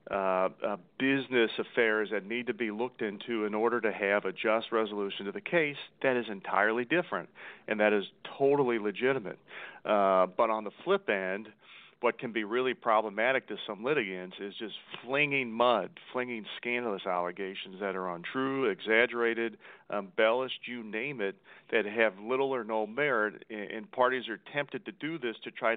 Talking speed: 170 wpm